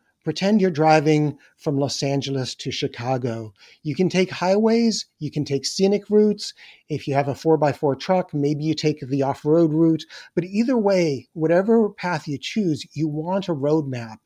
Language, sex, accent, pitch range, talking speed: English, male, American, 135-180 Hz, 170 wpm